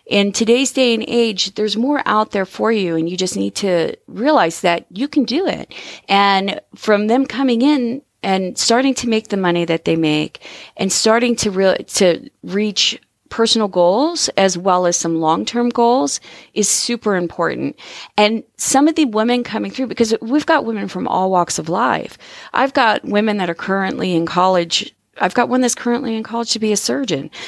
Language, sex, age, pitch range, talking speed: English, female, 30-49, 175-230 Hz, 190 wpm